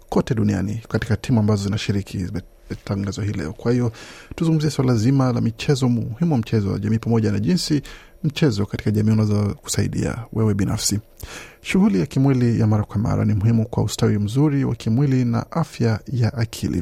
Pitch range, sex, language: 105-130 Hz, male, Swahili